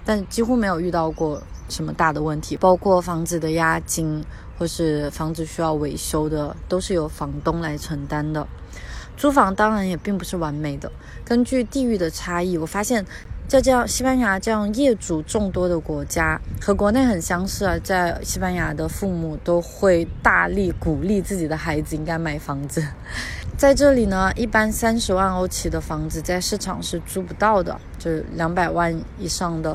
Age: 20-39